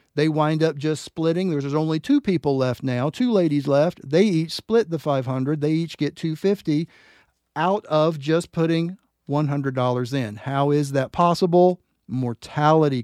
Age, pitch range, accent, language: 40-59, 140-175 Hz, American, English